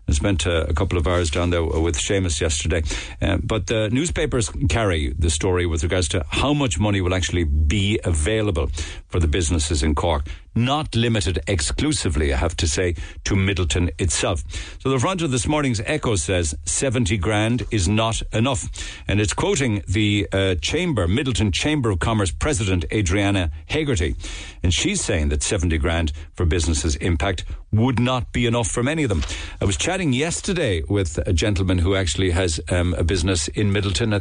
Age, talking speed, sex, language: 60-79, 180 wpm, male, English